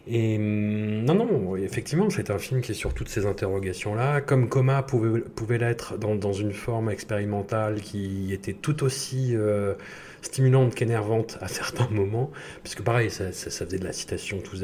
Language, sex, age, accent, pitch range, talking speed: French, male, 30-49, French, 100-125 Hz, 175 wpm